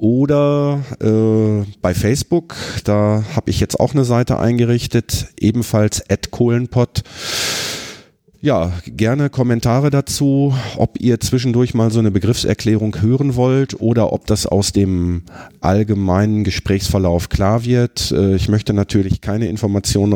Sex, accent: male, German